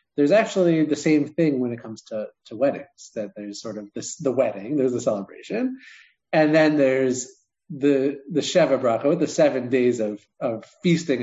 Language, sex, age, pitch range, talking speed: English, male, 30-49, 115-155 Hz, 180 wpm